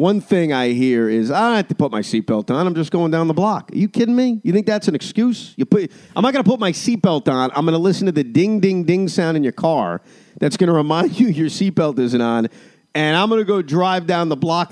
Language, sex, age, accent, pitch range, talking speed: English, male, 40-59, American, 140-200 Hz, 280 wpm